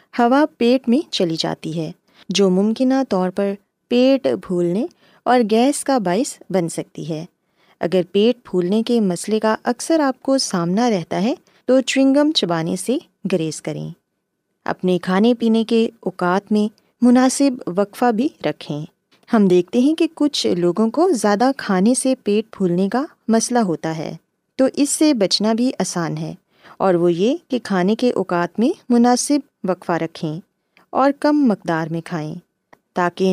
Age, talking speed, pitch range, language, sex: 20-39, 155 wpm, 180-245 Hz, Urdu, female